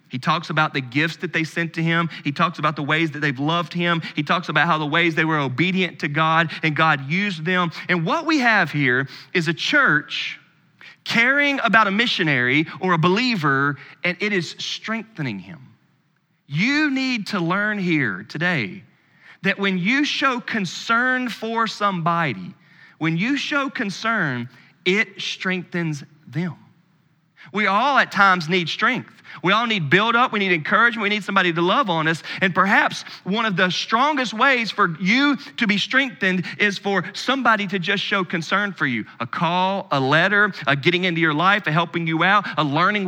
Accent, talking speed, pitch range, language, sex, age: American, 180 wpm, 155-200 Hz, English, male, 30-49